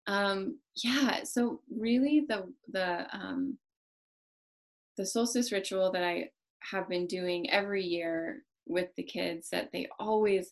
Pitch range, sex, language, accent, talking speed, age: 175-260 Hz, female, English, American, 130 wpm, 20-39